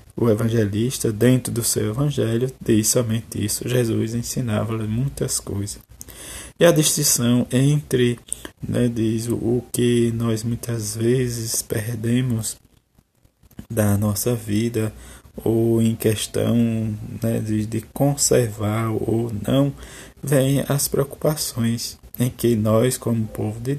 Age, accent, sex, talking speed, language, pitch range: 20-39, Brazilian, male, 115 wpm, Portuguese, 110-130 Hz